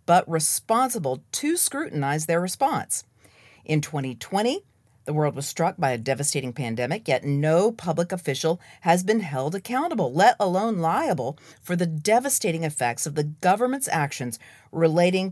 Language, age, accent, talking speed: English, 40-59, American, 140 wpm